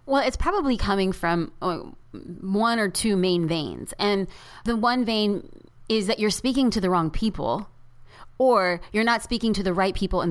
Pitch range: 170-225 Hz